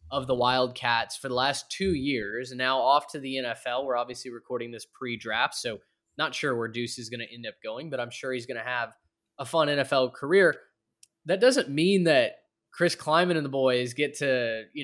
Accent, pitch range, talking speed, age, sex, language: American, 125-155 Hz, 215 wpm, 20-39, male, English